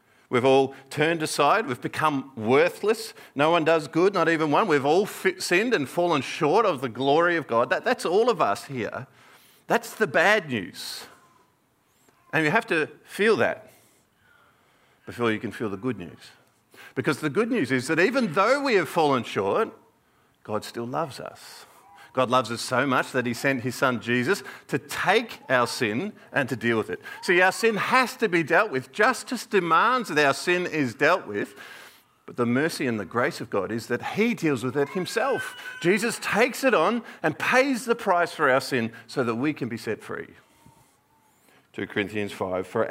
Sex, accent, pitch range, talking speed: male, Australian, 125-190 Hz, 190 wpm